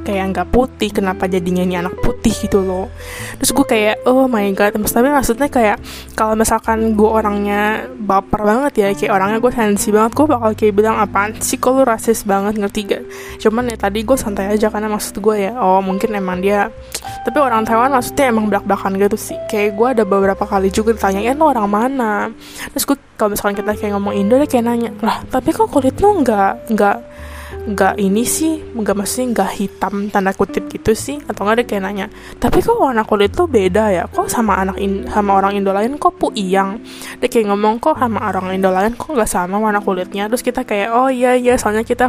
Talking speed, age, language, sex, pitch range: 210 wpm, 10-29, Indonesian, female, 195-245 Hz